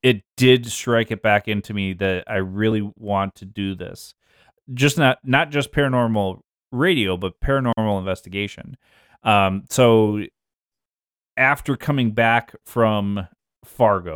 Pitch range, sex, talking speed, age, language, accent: 105-125 Hz, male, 125 wpm, 30-49, English, American